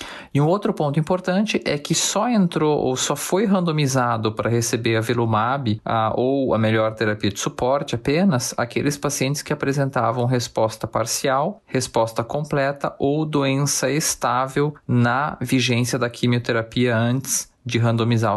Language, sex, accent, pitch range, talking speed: Portuguese, male, Brazilian, 115-145 Hz, 135 wpm